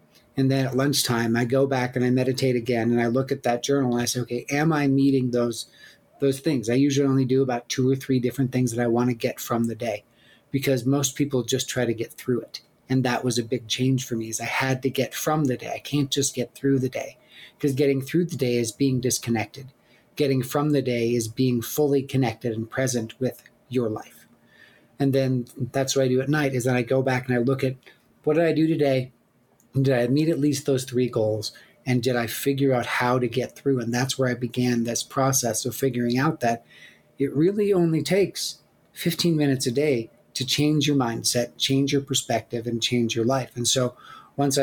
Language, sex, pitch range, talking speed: English, male, 120-135 Hz, 230 wpm